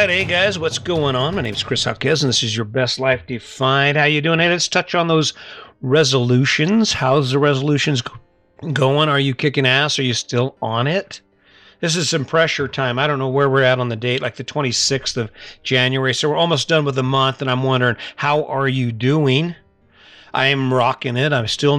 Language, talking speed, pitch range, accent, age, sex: English, 210 wpm, 130-155 Hz, American, 50-69, male